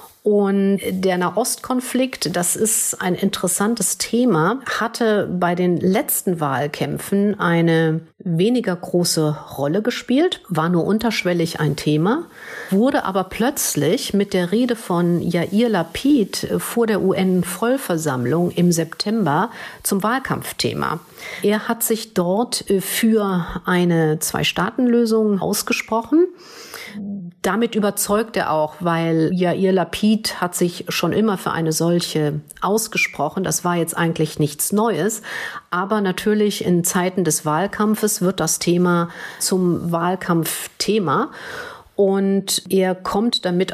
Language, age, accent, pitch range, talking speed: German, 50-69, German, 170-215 Hz, 115 wpm